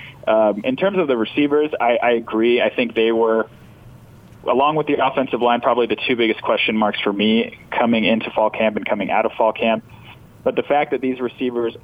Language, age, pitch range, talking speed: English, 20-39, 105-120 Hz, 215 wpm